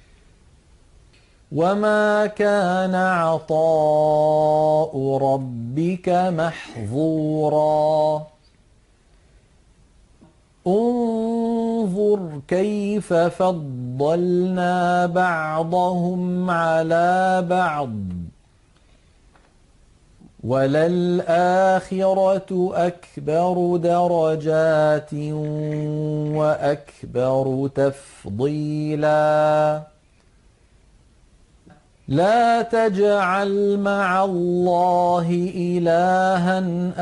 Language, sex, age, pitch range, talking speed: Arabic, male, 40-59, 150-180 Hz, 35 wpm